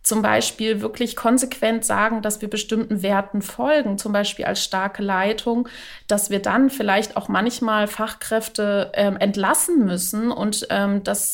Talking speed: 150 wpm